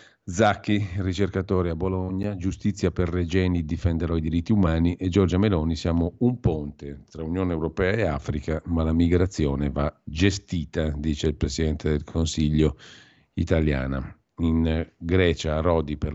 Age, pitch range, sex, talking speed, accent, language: 50-69, 75-90 Hz, male, 140 wpm, native, Italian